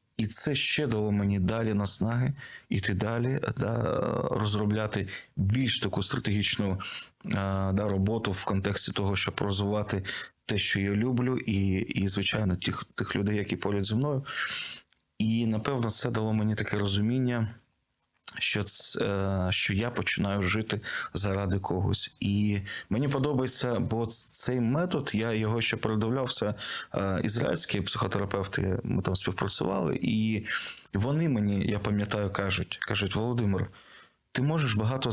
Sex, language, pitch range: male, Ukrainian, 100-120 Hz